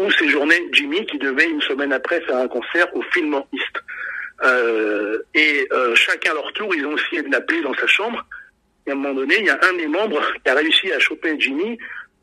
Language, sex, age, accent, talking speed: French, male, 60-79, French, 225 wpm